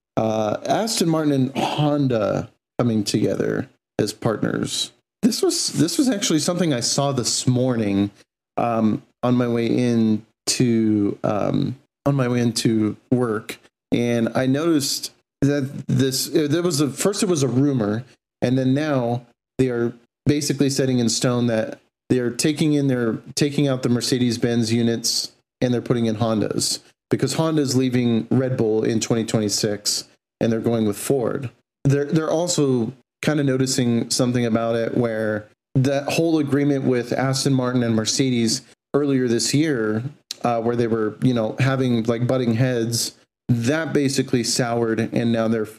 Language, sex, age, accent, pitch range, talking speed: English, male, 40-59, American, 115-140 Hz, 155 wpm